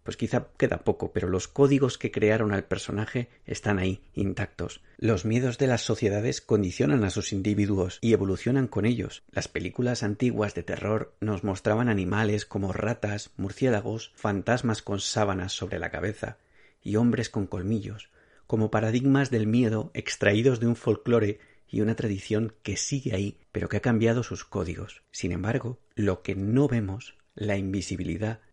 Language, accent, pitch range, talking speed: Spanish, Spanish, 95-115 Hz, 160 wpm